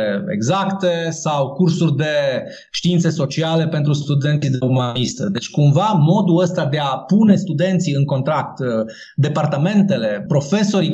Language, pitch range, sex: Romanian, 145-180 Hz, male